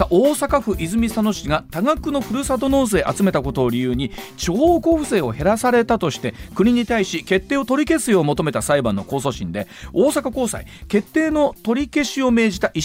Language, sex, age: Japanese, male, 40-59